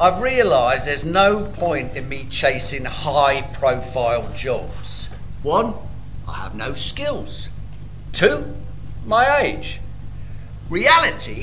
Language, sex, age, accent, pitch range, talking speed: English, male, 50-69, British, 130-185 Hz, 100 wpm